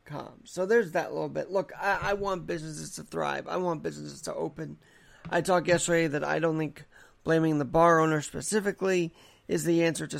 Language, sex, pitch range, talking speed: English, male, 115-170 Hz, 195 wpm